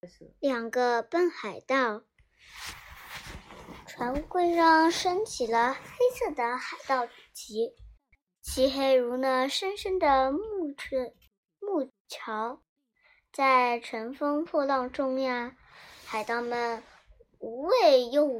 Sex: male